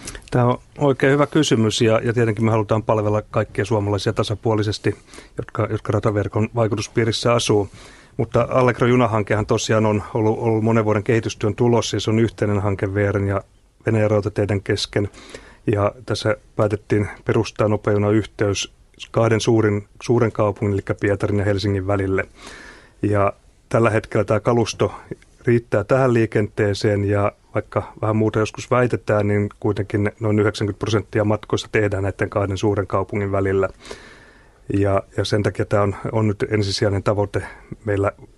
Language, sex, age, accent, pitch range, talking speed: Finnish, male, 30-49, native, 100-115 Hz, 145 wpm